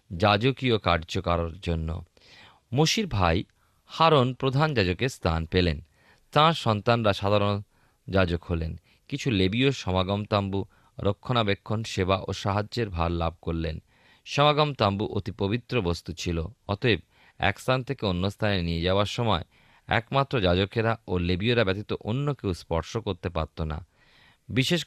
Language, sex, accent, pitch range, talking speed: Bengali, male, native, 90-125 Hz, 130 wpm